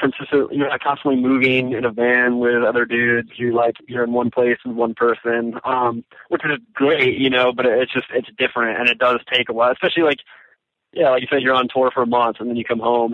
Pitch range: 115-140 Hz